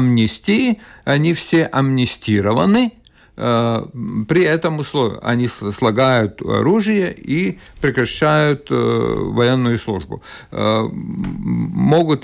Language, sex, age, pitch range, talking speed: Russian, male, 50-69, 115-155 Hz, 75 wpm